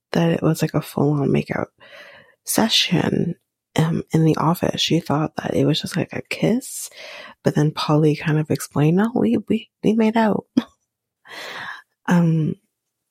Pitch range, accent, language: 170-225 Hz, American, English